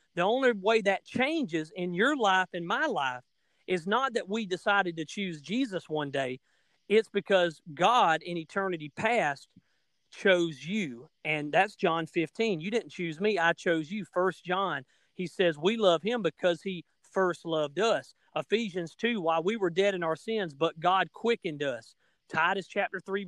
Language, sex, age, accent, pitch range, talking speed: English, male, 40-59, American, 170-220 Hz, 175 wpm